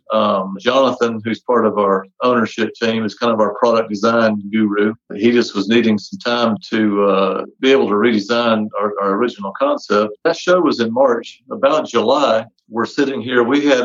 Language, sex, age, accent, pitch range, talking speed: English, male, 50-69, American, 110-135 Hz, 185 wpm